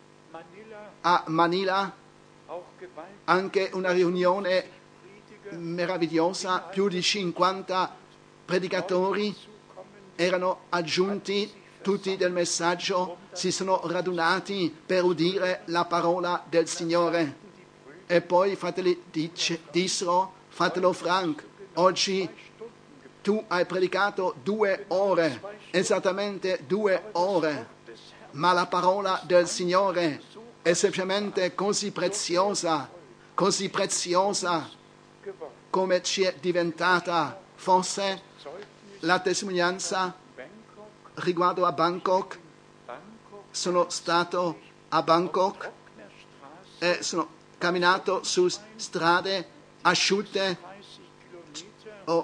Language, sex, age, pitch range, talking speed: Italian, male, 50-69, 170-190 Hz, 80 wpm